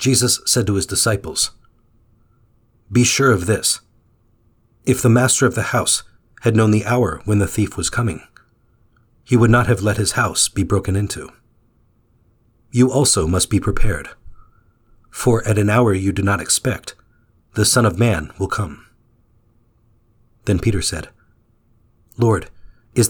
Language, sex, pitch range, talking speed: English, male, 105-120 Hz, 150 wpm